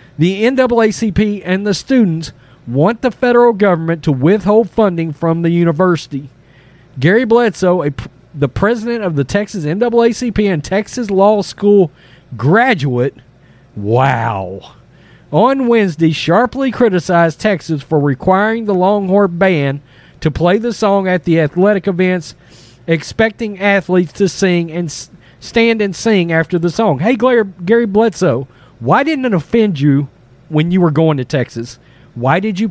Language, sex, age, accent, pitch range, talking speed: English, male, 40-59, American, 140-205 Hz, 140 wpm